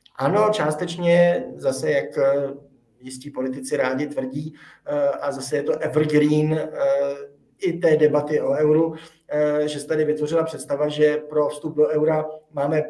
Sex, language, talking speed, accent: male, Czech, 135 wpm, native